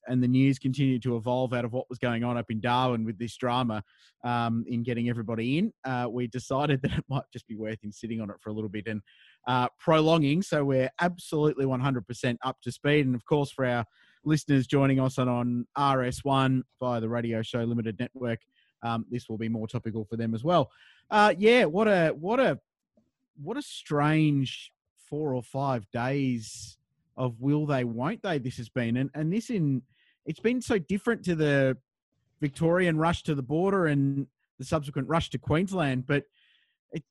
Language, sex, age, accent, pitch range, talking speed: English, male, 30-49, Australian, 120-155 Hz, 195 wpm